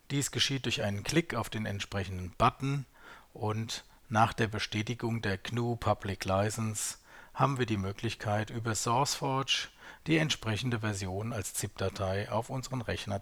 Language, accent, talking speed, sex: German, German, 140 wpm, male